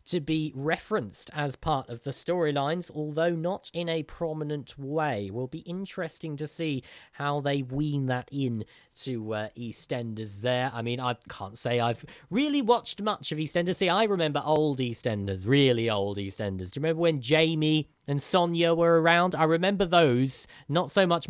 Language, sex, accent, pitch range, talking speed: English, male, British, 120-165 Hz, 180 wpm